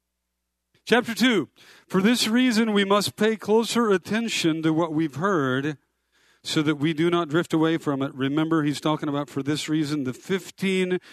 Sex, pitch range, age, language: male, 130-165 Hz, 50-69, English